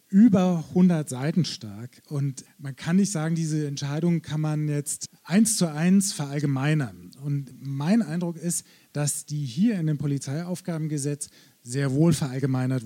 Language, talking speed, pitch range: German, 145 wpm, 135-180 Hz